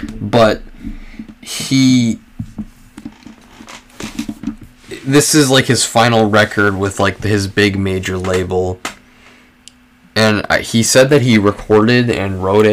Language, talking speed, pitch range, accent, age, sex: English, 105 wpm, 90-110 Hz, American, 20-39, male